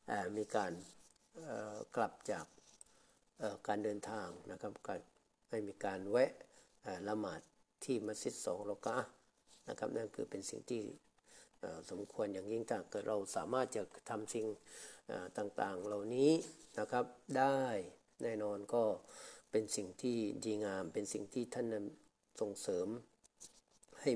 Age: 60-79